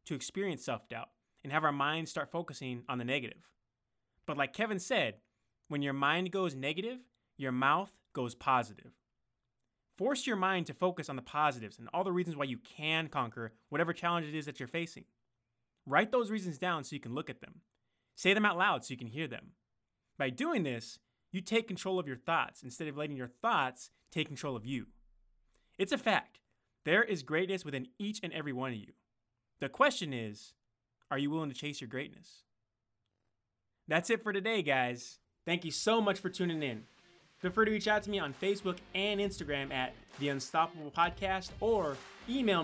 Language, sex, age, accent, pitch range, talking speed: English, male, 20-39, American, 130-185 Hz, 195 wpm